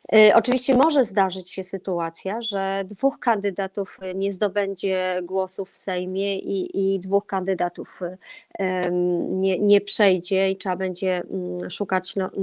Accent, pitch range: native, 195-255 Hz